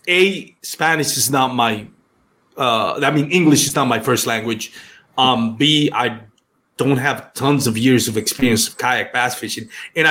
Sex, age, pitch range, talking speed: male, 30-49, 125-160 Hz, 170 wpm